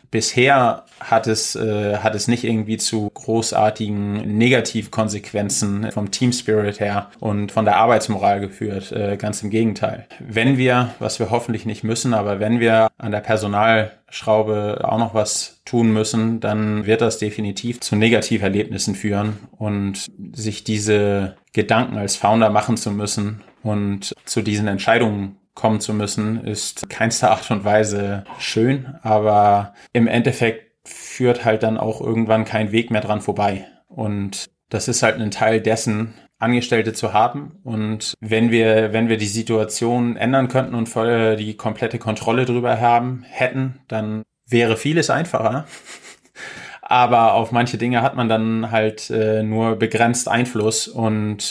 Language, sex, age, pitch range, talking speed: German, male, 20-39, 105-115 Hz, 150 wpm